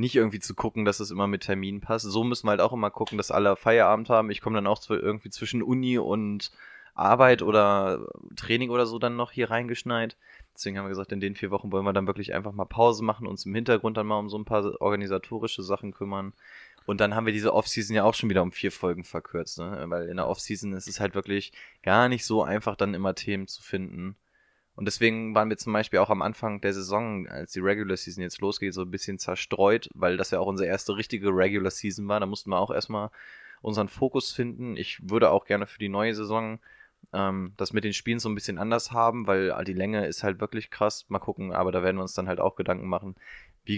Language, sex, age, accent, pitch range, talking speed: German, male, 20-39, German, 95-110 Hz, 240 wpm